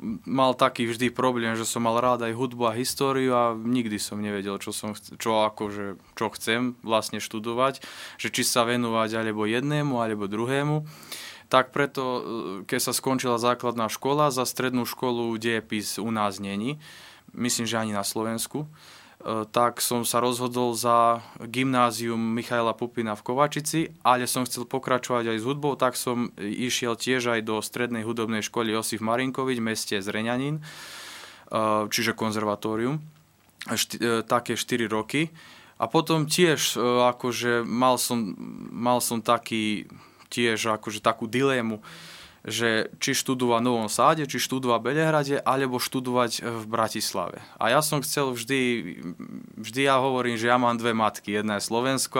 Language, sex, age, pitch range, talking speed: Slovak, male, 20-39, 110-130 Hz, 150 wpm